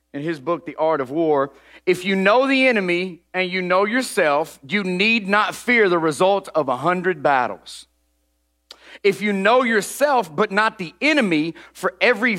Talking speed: 175 wpm